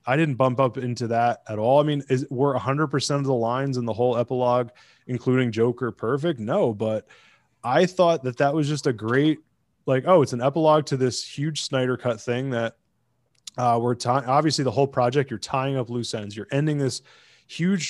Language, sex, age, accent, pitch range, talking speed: English, male, 20-39, American, 120-145 Hz, 200 wpm